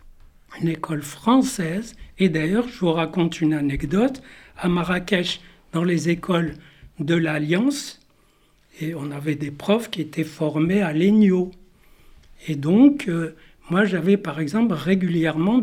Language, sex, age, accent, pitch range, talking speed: French, male, 60-79, French, 155-200 Hz, 135 wpm